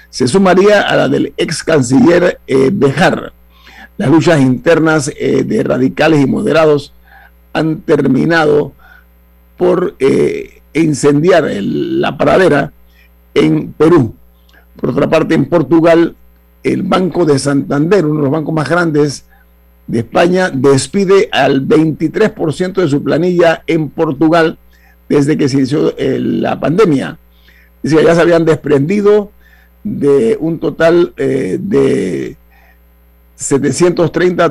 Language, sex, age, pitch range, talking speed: Spanish, male, 50-69, 125-170 Hz, 125 wpm